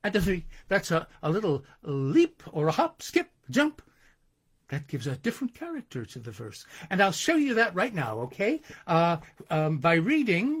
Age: 60-79